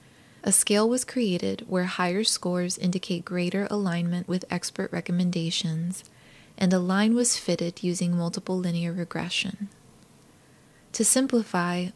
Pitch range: 175-210 Hz